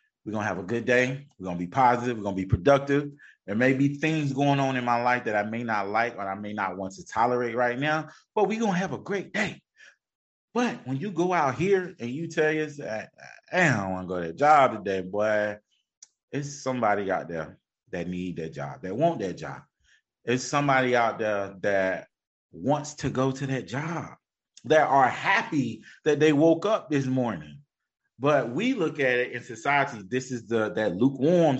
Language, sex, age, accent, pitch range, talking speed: English, male, 30-49, American, 105-145 Hz, 205 wpm